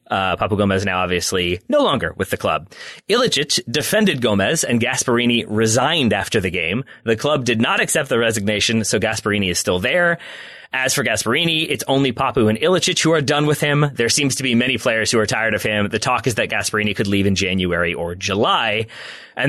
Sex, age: male, 30-49